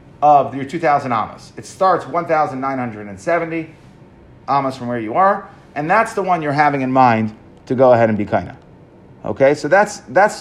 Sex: male